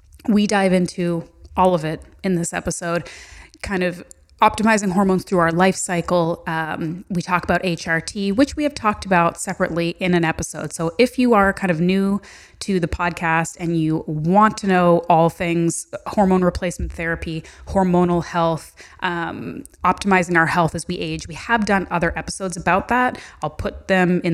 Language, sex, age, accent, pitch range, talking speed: English, female, 30-49, American, 160-185 Hz, 175 wpm